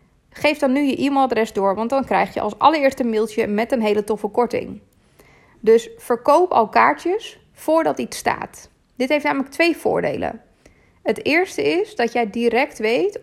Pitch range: 220-290 Hz